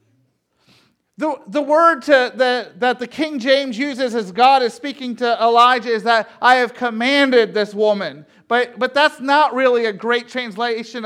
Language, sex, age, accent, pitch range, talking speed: English, male, 40-59, American, 230-305 Hz, 170 wpm